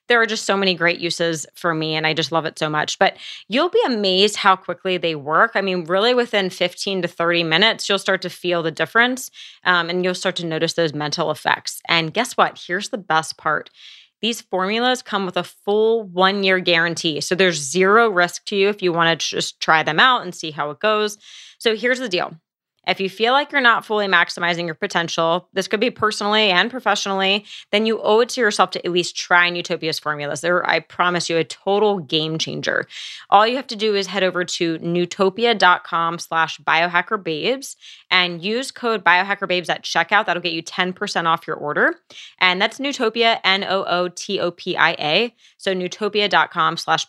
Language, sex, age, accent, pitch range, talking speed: English, female, 20-39, American, 170-215 Hz, 195 wpm